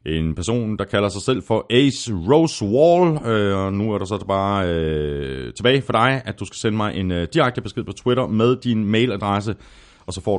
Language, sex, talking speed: Danish, male, 220 wpm